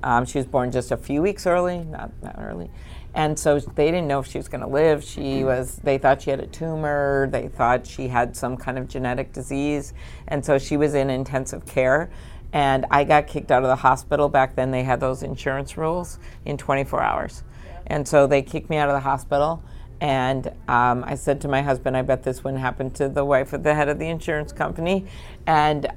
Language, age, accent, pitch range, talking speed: English, 50-69, American, 130-150 Hz, 220 wpm